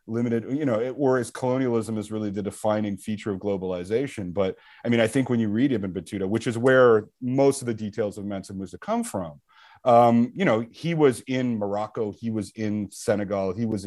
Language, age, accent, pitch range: English, 30-49, American, 110-140 Hz